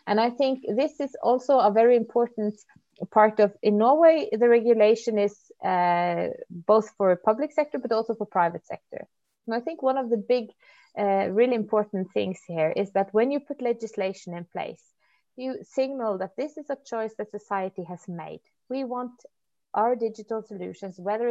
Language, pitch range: English, 185-240 Hz